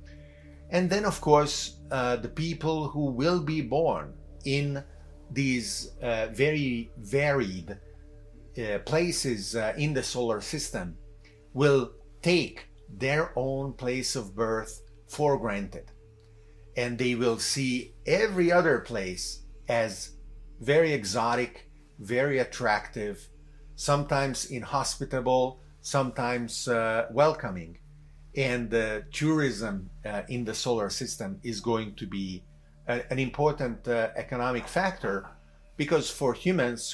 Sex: male